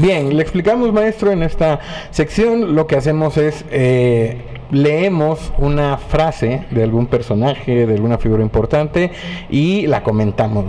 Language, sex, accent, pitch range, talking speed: Spanish, male, Mexican, 120-160 Hz, 140 wpm